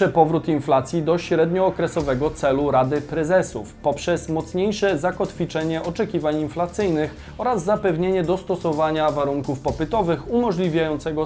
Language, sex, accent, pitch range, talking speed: Polish, male, native, 140-190 Hz, 95 wpm